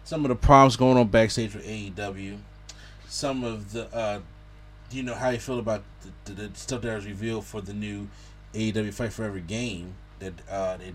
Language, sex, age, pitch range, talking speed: English, male, 20-39, 100-120 Hz, 205 wpm